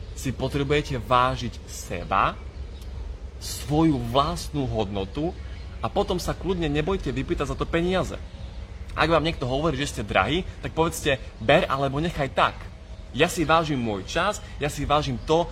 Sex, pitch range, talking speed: male, 100-150 Hz, 145 wpm